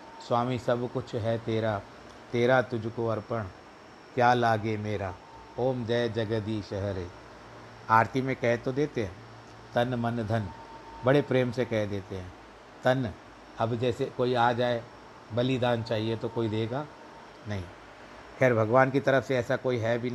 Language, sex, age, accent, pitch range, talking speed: Hindi, male, 60-79, native, 110-130 Hz, 150 wpm